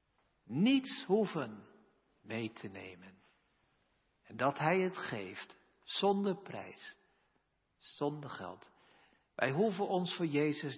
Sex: male